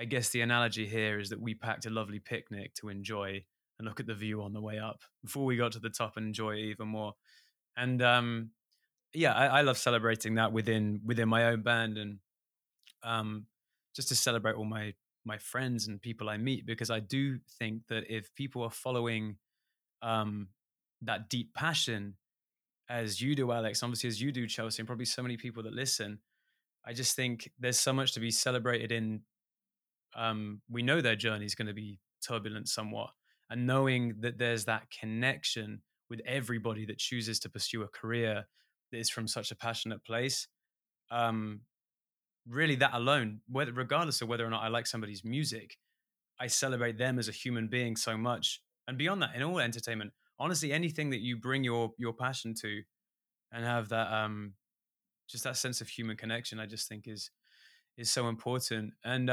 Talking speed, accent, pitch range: 185 wpm, British, 110-125 Hz